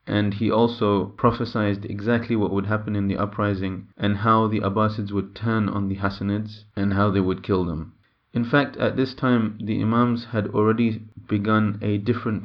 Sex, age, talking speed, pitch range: male, 30-49, 185 wpm, 100-115 Hz